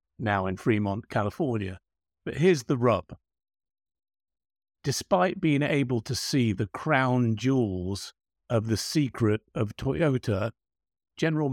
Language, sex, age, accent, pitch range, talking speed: English, male, 50-69, British, 105-135 Hz, 115 wpm